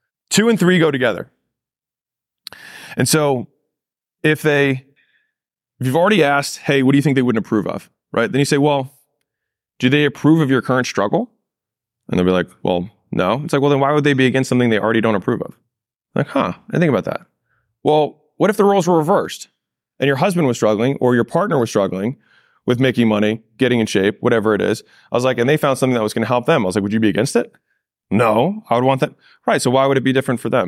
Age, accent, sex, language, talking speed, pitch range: 20-39, American, male, English, 240 wpm, 115-150 Hz